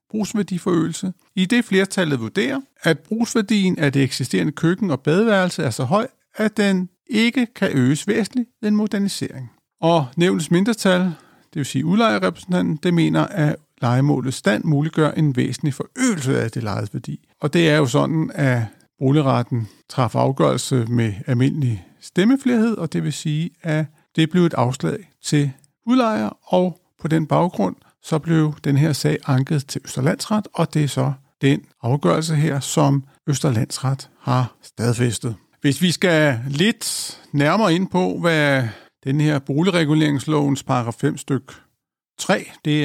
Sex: male